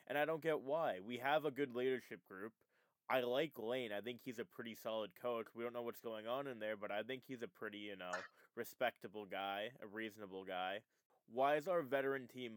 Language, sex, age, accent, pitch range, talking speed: English, male, 20-39, American, 105-130 Hz, 225 wpm